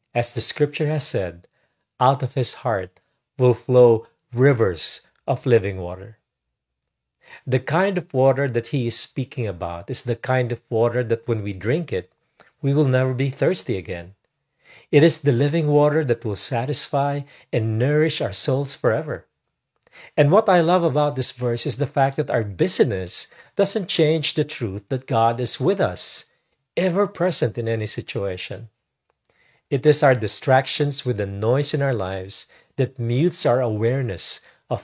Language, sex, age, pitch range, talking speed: English, male, 50-69, 115-145 Hz, 165 wpm